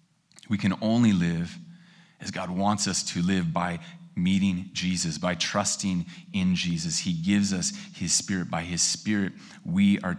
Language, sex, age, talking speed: English, male, 30-49, 160 wpm